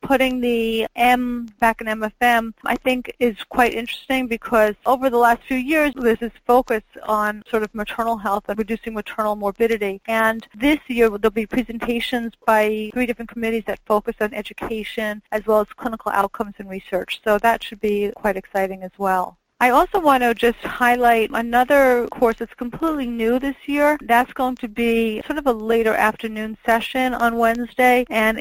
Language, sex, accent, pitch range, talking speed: English, female, American, 210-240 Hz, 175 wpm